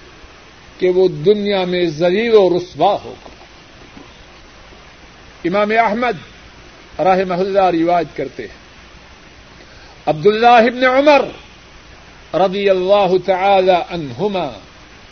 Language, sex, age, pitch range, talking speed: Urdu, male, 50-69, 185-240 Hz, 85 wpm